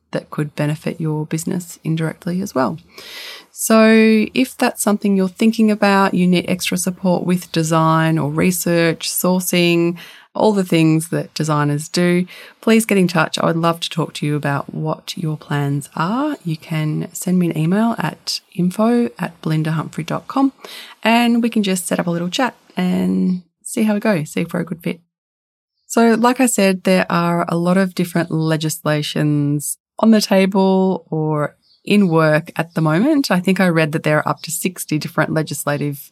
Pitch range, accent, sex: 160-200 Hz, Australian, female